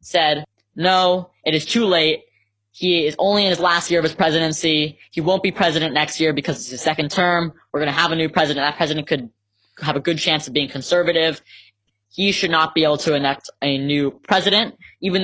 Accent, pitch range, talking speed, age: American, 145-180 Hz, 215 wpm, 10-29